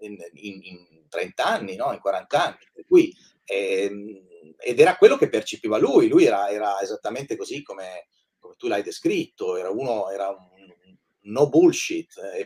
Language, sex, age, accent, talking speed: Italian, male, 30-49, native, 175 wpm